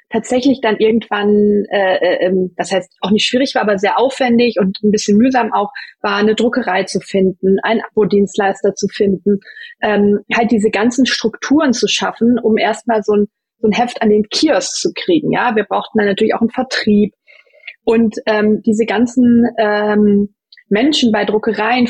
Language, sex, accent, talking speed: German, female, German, 175 wpm